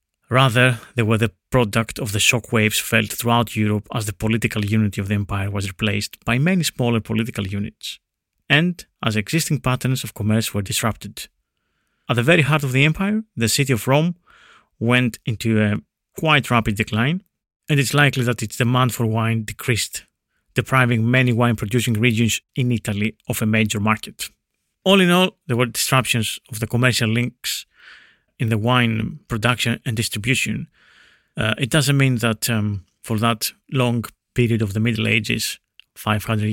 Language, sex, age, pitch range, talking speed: English, male, 30-49, 110-130 Hz, 165 wpm